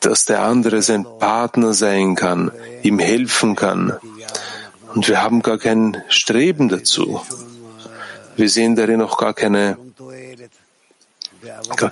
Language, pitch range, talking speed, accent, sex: German, 105-125 Hz, 115 wpm, German, male